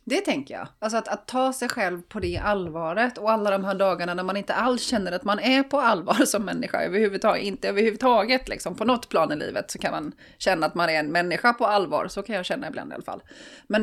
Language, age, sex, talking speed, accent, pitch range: Swedish, 30-49, female, 250 wpm, native, 180-235 Hz